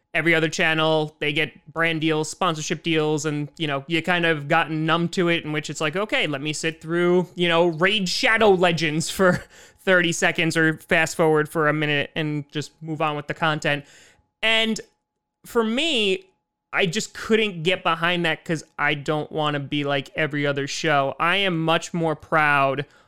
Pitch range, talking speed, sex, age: 150-175 Hz, 190 wpm, male, 20-39